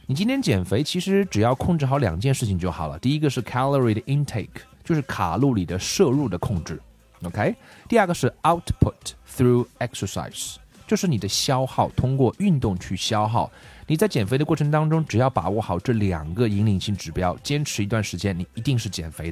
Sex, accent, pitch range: male, native, 100-145 Hz